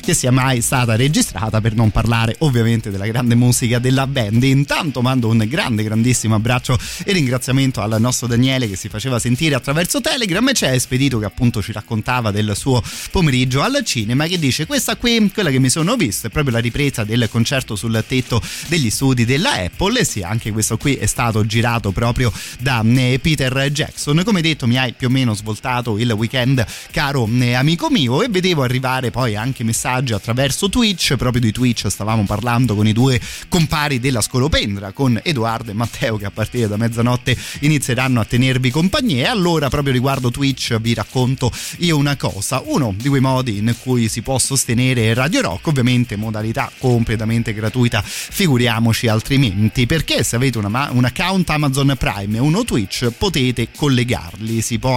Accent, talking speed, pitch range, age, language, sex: native, 180 wpm, 115-135 Hz, 30-49, Italian, male